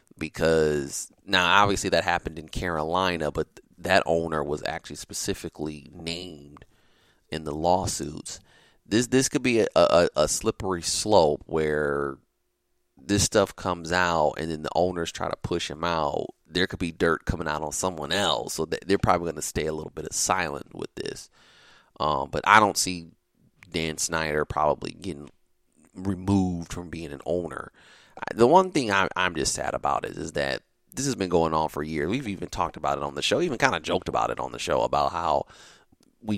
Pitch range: 75-90 Hz